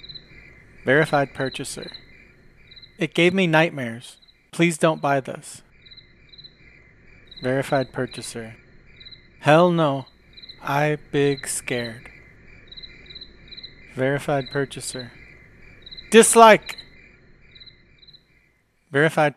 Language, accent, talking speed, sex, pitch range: English, American, 65 wpm, male, 130-160 Hz